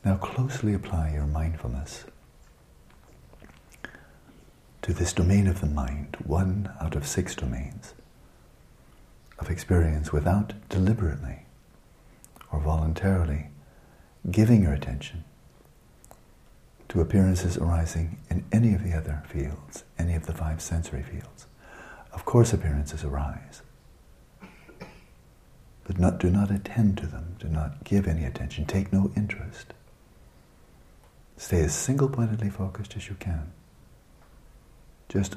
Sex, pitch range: male, 75-100 Hz